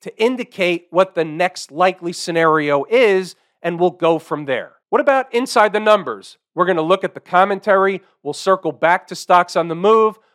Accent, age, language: American, 40-59, English